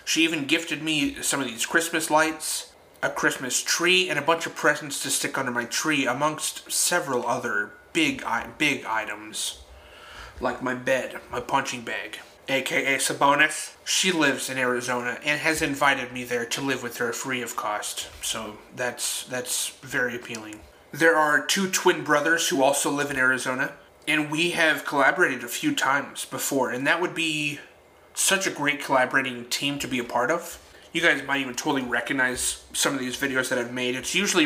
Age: 30-49